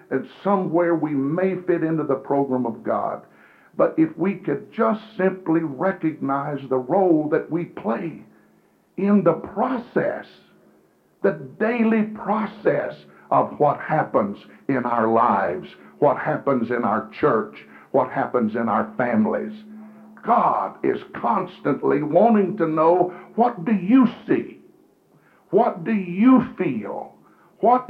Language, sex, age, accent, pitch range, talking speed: English, male, 60-79, American, 165-205 Hz, 125 wpm